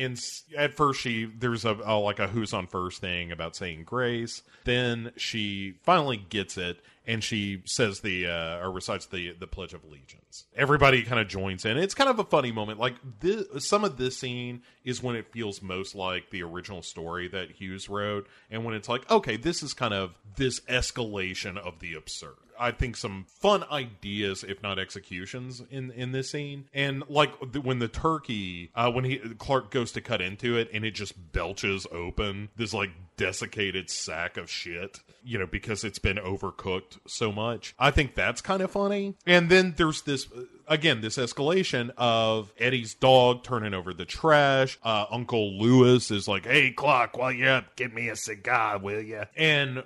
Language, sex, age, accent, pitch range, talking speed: English, male, 40-59, American, 100-130 Hz, 190 wpm